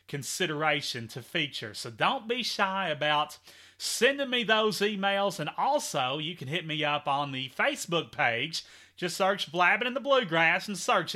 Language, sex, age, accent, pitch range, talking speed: English, male, 30-49, American, 140-200 Hz, 165 wpm